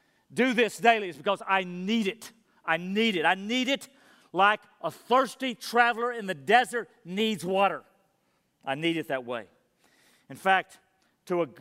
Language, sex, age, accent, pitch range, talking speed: English, male, 50-69, American, 170-225 Hz, 160 wpm